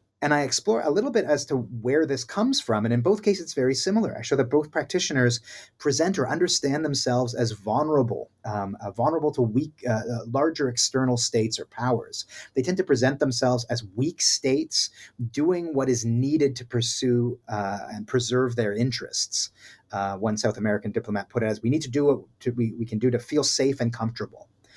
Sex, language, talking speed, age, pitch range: male, English, 200 wpm, 30-49, 110-140 Hz